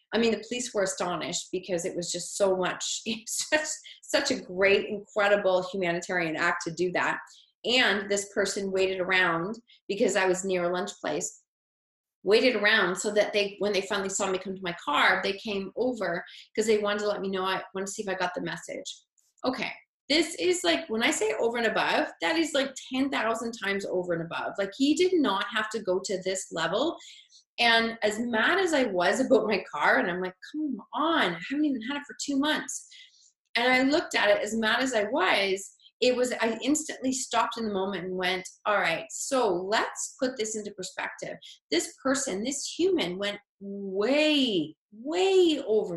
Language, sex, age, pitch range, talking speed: English, female, 30-49, 190-270 Hz, 200 wpm